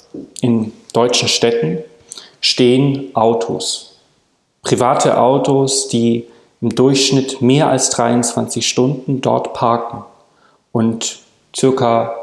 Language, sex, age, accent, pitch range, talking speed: German, male, 40-59, German, 115-135 Hz, 90 wpm